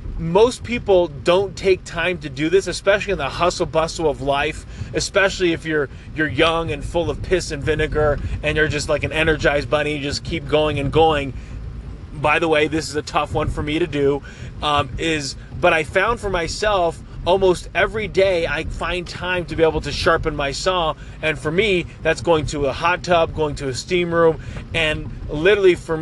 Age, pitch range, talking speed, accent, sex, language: 30-49, 140-170 Hz, 200 wpm, American, male, English